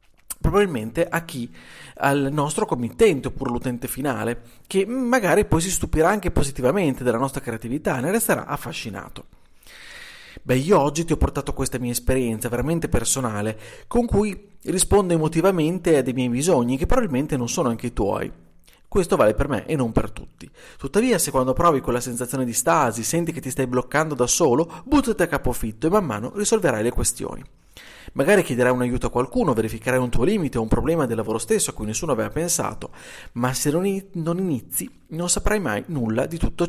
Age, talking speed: 30-49, 185 wpm